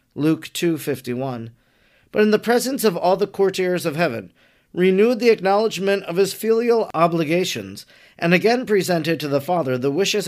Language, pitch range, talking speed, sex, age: English, 140-180 Hz, 160 wpm, male, 40-59